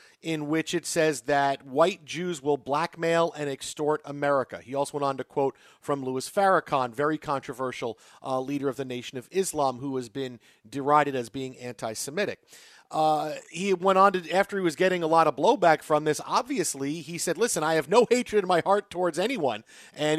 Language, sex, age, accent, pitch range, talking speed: English, male, 40-59, American, 140-175 Hz, 195 wpm